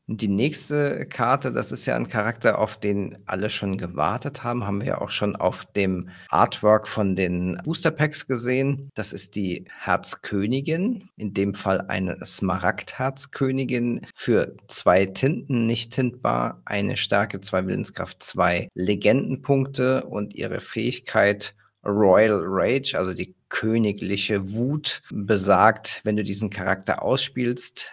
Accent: German